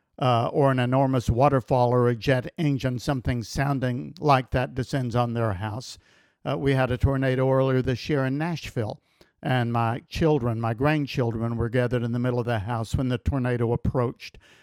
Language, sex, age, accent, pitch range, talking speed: English, male, 60-79, American, 125-155 Hz, 180 wpm